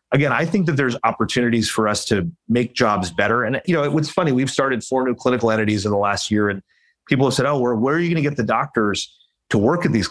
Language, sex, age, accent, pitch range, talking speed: English, male, 30-49, American, 110-140 Hz, 265 wpm